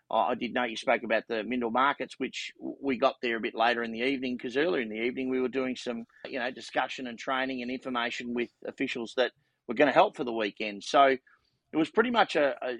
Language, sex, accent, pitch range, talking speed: English, male, Australian, 110-135 Hz, 245 wpm